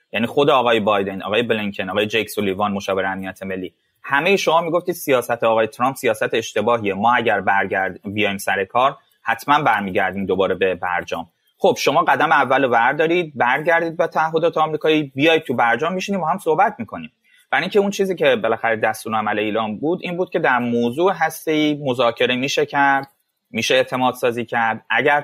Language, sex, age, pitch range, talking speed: Persian, male, 30-49, 105-160 Hz, 175 wpm